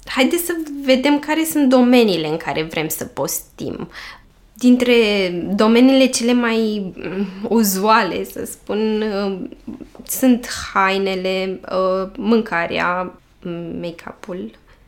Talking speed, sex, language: 90 wpm, female, Romanian